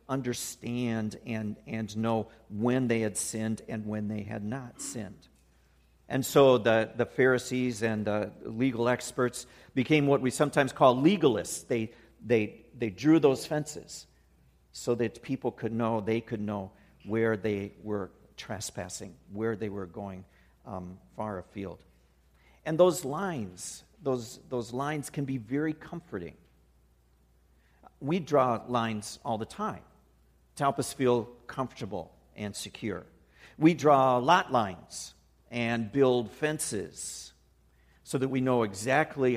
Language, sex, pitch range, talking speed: English, male, 95-130 Hz, 135 wpm